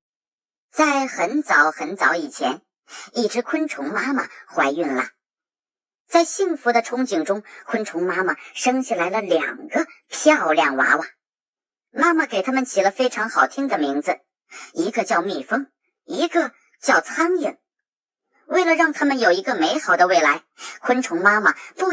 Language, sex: Chinese, male